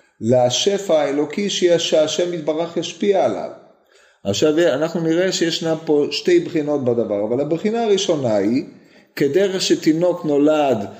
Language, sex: Hebrew, male